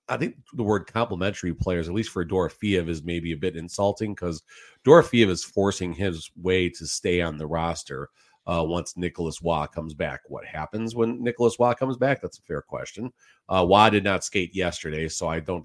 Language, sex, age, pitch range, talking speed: English, male, 40-59, 85-110 Hz, 200 wpm